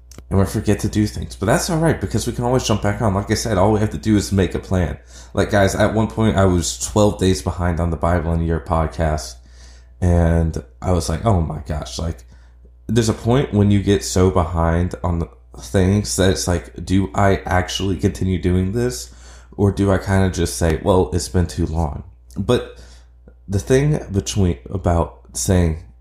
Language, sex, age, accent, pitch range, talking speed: English, male, 20-39, American, 80-100 Hz, 210 wpm